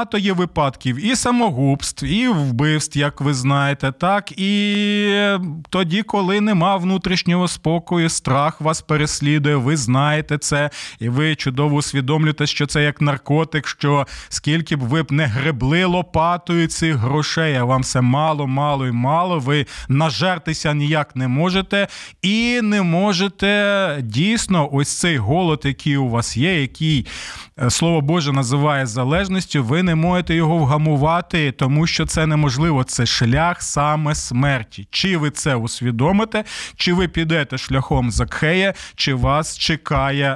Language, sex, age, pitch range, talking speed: Ukrainian, male, 20-39, 140-180 Hz, 140 wpm